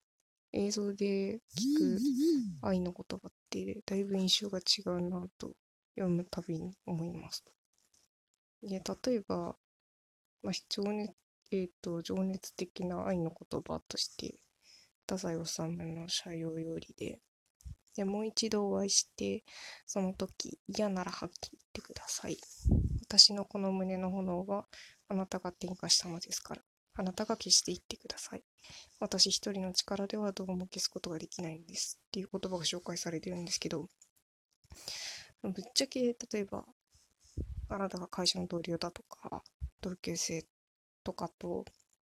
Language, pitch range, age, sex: Japanese, 175-205 Hz, 20-39, female